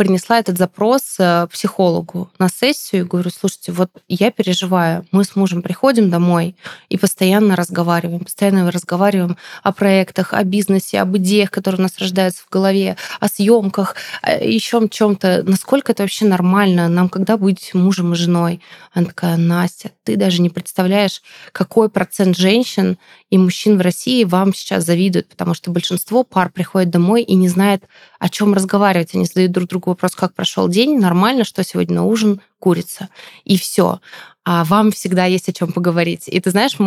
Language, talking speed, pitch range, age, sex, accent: Russian, 170 wpm, 180-210 Hz, 20-39, female, native